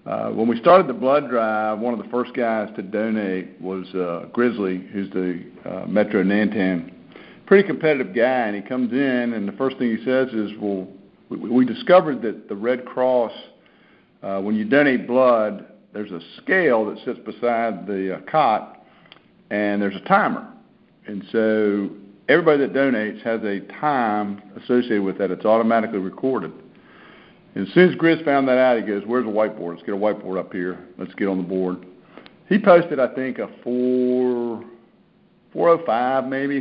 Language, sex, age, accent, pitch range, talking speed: English, male, 50-69, American, 100-130 Hz, 175 wpm